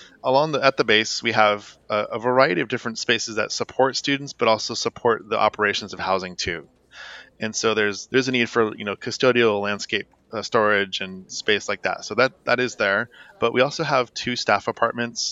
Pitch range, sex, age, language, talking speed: 100-120 Hz, male, 20-39, English, 205 wpm